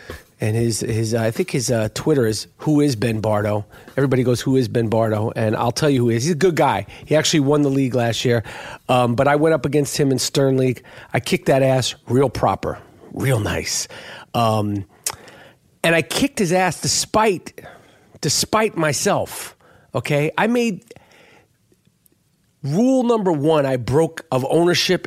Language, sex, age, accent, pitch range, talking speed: English, male, 40-59, American, 135-170 Hz, 180 wpm